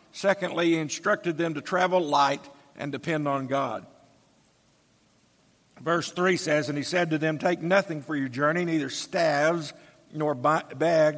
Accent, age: American, 50-69